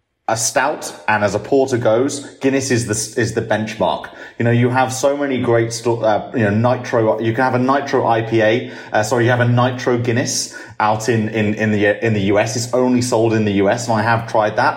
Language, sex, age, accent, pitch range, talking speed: English, male, 30-49, British, 110-130 Hz, 230 wpm